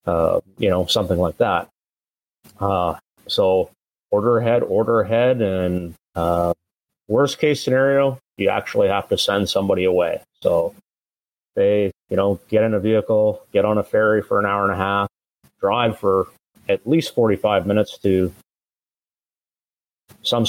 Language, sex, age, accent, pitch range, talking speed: English, male, 30-49, American, 95-120 Hz, 145 wpm